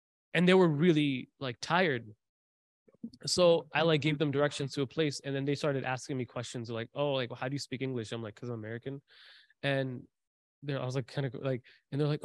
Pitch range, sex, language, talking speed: 125-160 Hz, male, English, 235 wpm